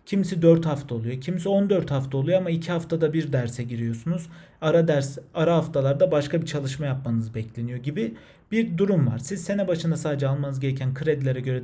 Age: 40-59